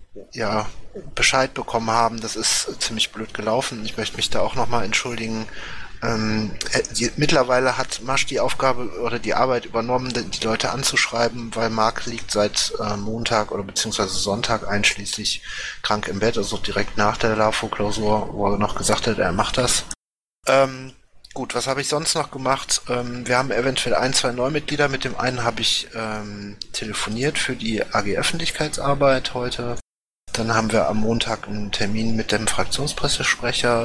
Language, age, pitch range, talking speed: German, 30-49, 105-120 Hz, 165 wpm